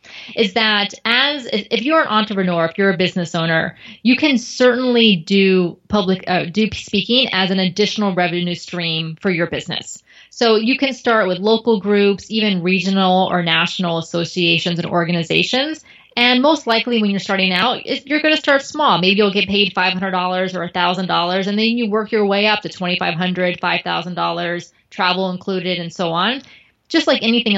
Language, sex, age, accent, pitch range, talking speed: English, female, 20-39, American, 180-225 Hz, 170 wpm